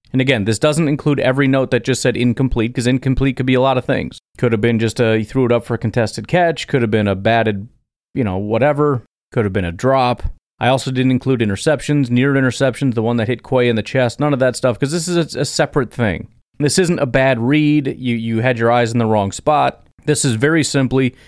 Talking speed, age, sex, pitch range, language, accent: 250 wpm, 30-49, male, 115-140 Hz, English, American